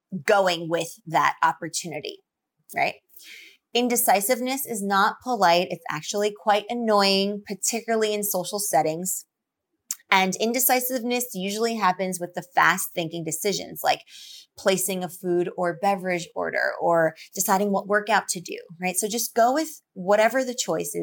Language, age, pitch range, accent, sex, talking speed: English, 20-39, 180-235 Hz, American, female, 135 wpm